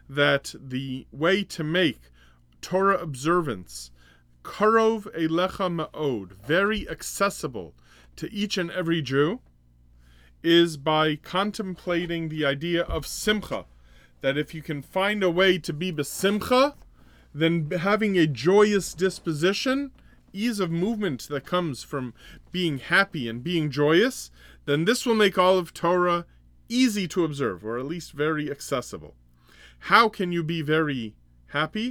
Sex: male